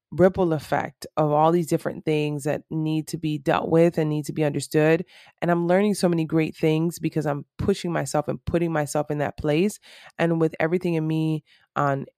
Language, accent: English, American